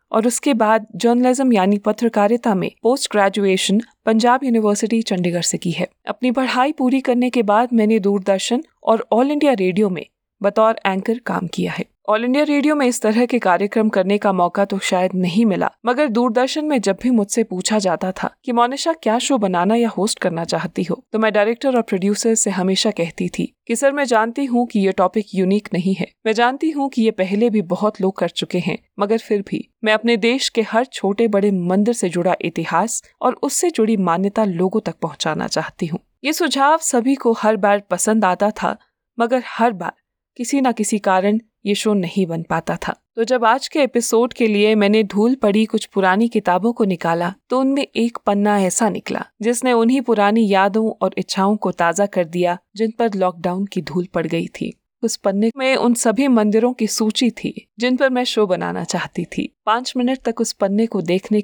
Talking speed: 200 wpm